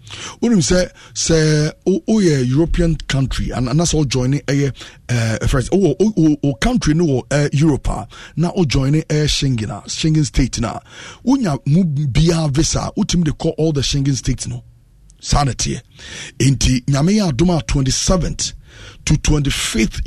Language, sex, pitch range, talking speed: English, male, 125-170 Hz, 140 wpm